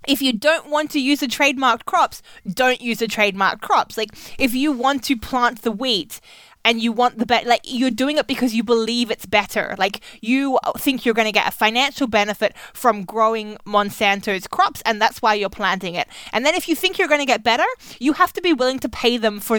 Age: 20-39